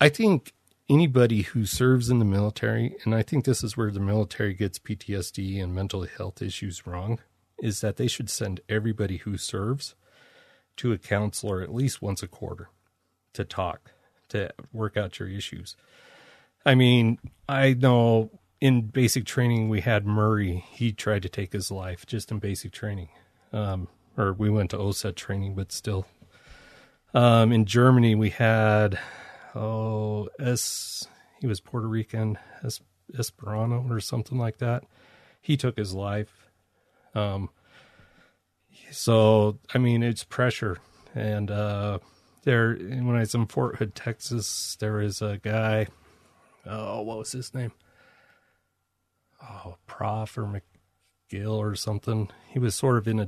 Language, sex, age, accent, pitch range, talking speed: English, male, 30-49, American, 100-115 Hz, 150 wpm